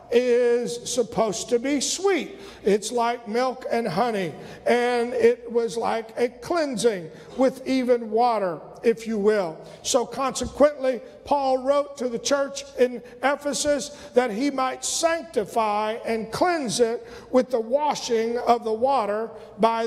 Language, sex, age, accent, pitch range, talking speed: English, male, 50-69, American, 225-275 Hz, 135 wpm